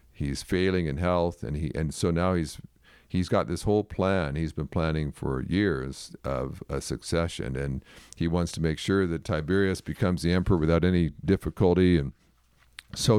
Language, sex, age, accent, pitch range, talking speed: English, male, 50-69, American, 80-100 Hz, 175 wpm